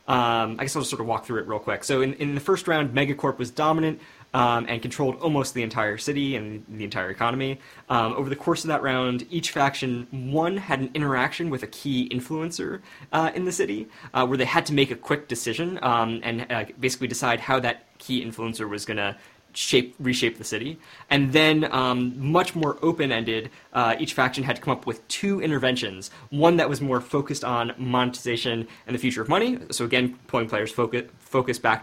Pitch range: 115-140 Hz